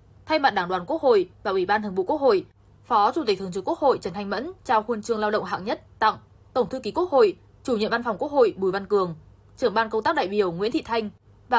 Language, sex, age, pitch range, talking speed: Vietnamese, female, 10-29, 190-230 Hz, 285 wpm